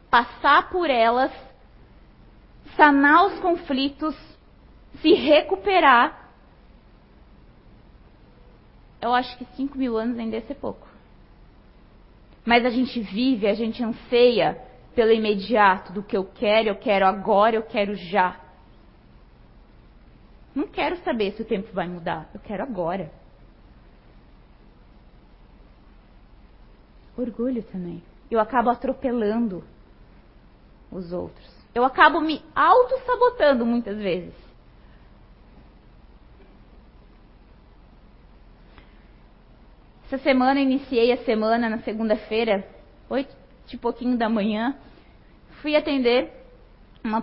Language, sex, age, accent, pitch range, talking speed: Portuguese, female, 20-39, Brazilian, 220-300 Hz, 95 wpm